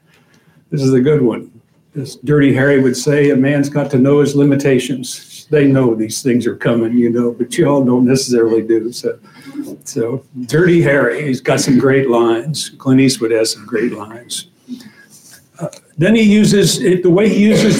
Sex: male